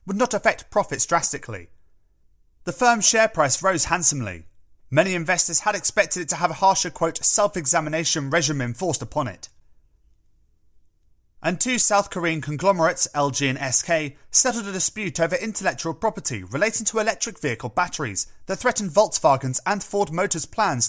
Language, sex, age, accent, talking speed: English, male, 30-49, British, 150 wpm